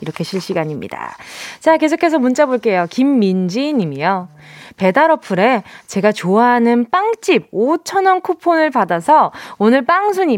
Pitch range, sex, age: 210-335 Hz, female, 20-39